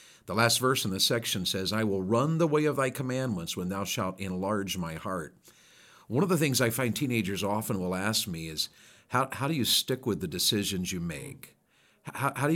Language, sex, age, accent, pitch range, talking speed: English, male, 50-69, American, 95-120 Hz, 220 wpm